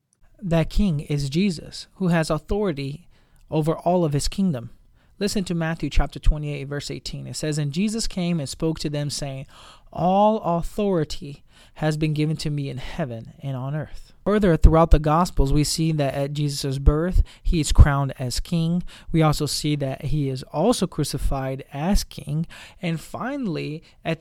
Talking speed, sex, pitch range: 175 wpm, male, 145-180 Hz